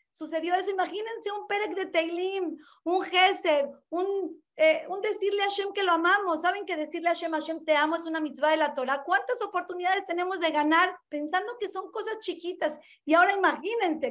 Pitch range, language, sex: 260-360 Hz, Spanish, female